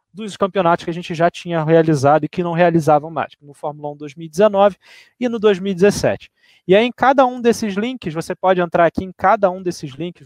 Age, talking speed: 20-39, 210 wpm